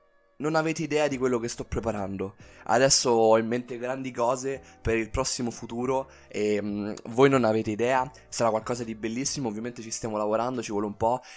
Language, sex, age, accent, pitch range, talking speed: Italian, male, 20-39, native, 100-125 Hz, 185 wpm